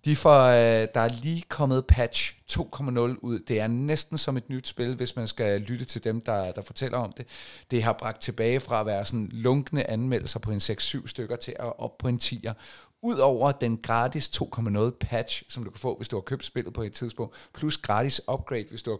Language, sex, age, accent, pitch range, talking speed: Danish, male, 30-49, native, 110-130 Hz, 220 wpm